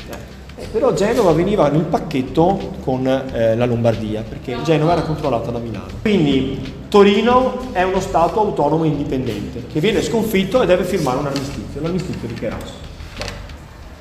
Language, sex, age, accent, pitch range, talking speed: Italian, male, 30-49, native, 120-170 Hz, 145 wpm